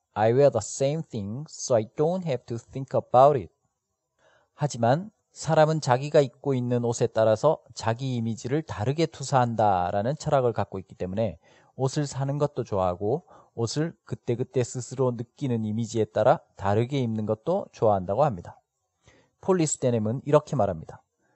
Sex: male